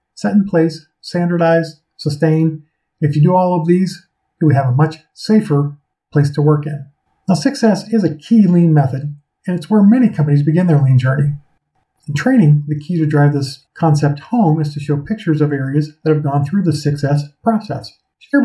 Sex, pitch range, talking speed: male, 145-185 Hz, 195 wpm